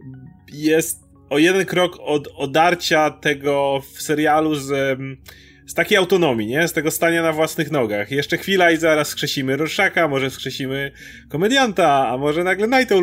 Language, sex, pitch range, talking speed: Polish, male, 135-180 Hz, 150 wpm